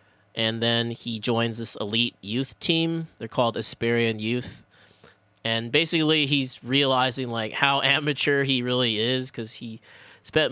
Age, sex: 20-39, male